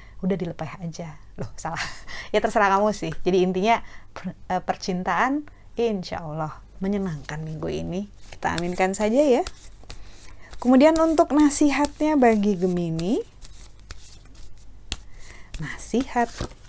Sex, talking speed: female, 100 wpm